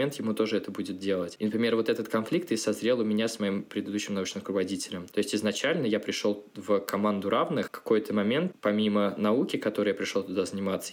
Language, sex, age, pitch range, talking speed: Russian, male, 20-39, 105-130 Hz, 205 wpm